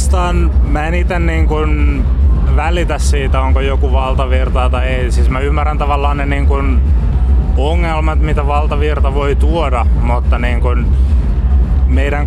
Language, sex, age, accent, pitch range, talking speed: Finnish, male, 20-39, native, 65-70 Hz, 120 wpm